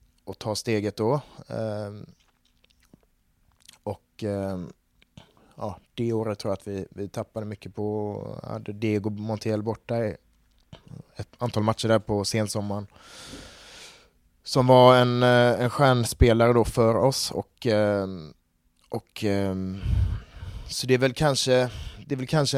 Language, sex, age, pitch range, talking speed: Swedish, male, 20-39, 105-120 Hz, 120 wpm